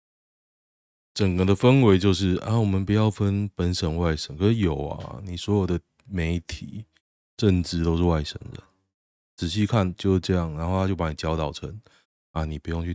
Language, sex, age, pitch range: Chinese, male, 20-39, 80-105 Hz